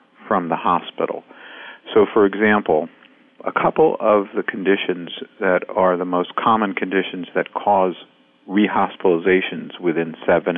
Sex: male